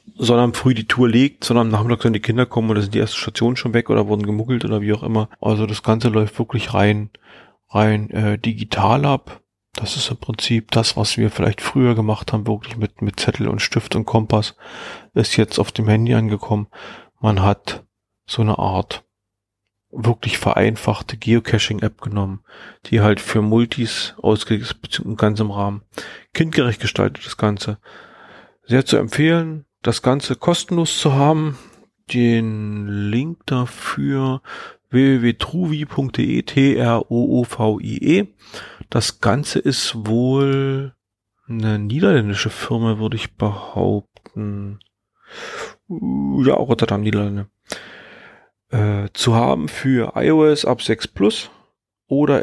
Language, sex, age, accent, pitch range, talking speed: German, male, 30-49, German, 105-125 Hz, 135 wpm